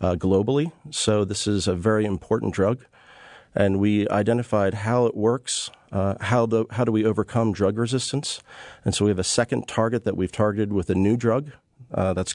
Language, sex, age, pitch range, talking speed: English, male, 40-59, 90-110 Hz, 190 wpm